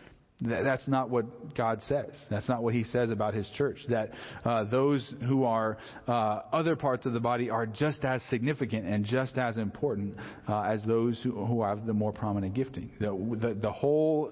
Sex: male